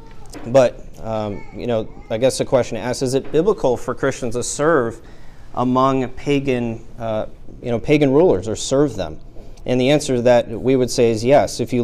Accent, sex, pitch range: American, male, 115-140 Hz